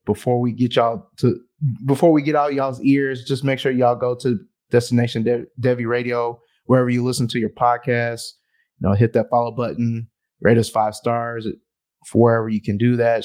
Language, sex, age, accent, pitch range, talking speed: English, male, 20-39, American, 115-130 Hz, 190 wpm